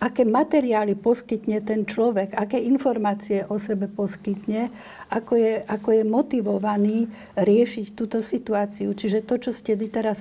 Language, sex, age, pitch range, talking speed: Slovak, female, 60-79, 210-225 Hz, 140 wpm